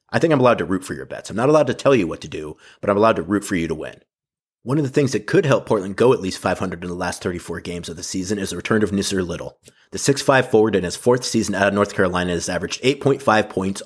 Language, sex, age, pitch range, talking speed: English, male, 30-49, 95-120 Hz, 295 wpm